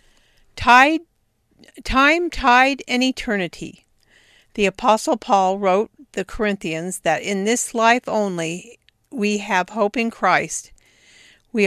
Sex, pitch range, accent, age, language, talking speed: female, 195-235 Hz, American, 50-69, English, 115 wpm